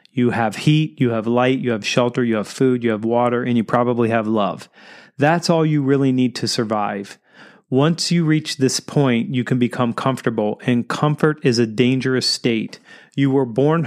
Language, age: English, 30-49